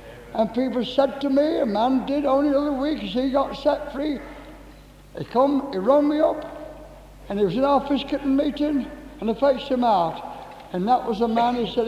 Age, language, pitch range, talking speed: 60-79, English, 225-295 Hz, 205 wpm